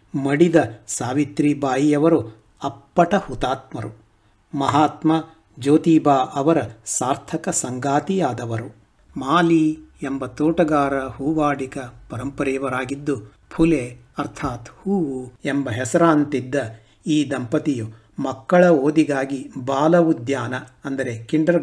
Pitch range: 130-160 Hz